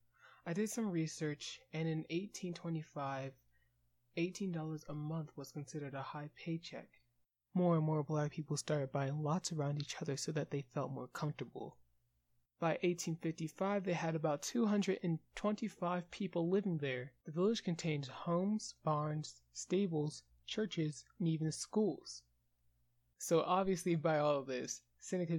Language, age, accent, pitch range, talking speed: English, 20-39, American, 140-180 Hz, 135 wpm